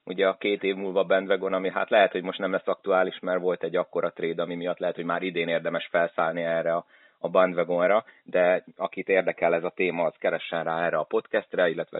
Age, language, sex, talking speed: 30-49, Hungarian, male, 215 wpm